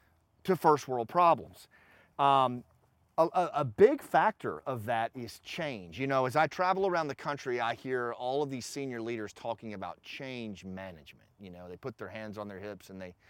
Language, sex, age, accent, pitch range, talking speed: English, male, 30-49, American, 110-150 Hz, 200 wpm